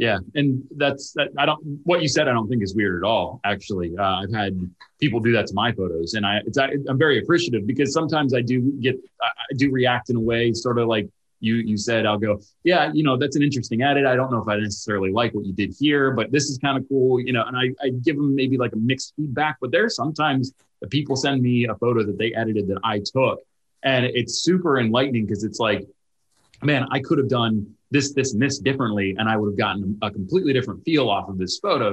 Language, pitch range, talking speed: English, 105-130 Hz, 250 wpm